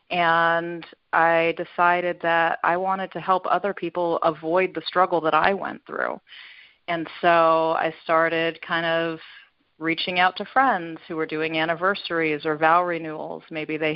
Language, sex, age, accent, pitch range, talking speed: English, female, 30-49, American, 160-175 Hz, 155 wpm